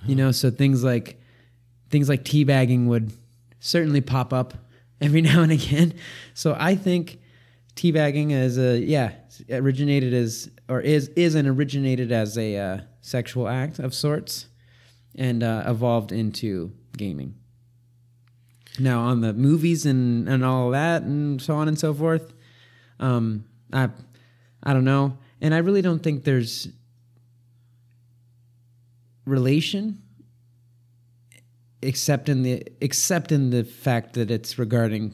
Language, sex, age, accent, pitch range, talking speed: English, male, 20-39, American, 120-140 Hz, 130 wpm